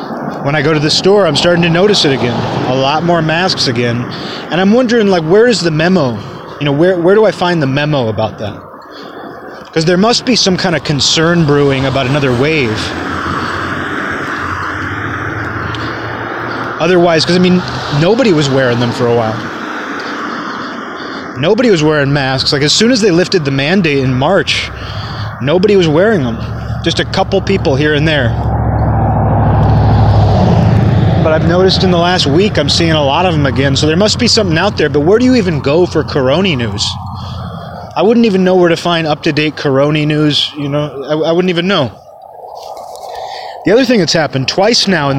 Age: 30-49